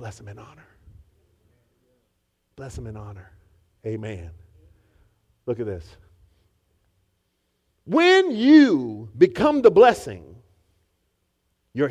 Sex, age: male, 50-69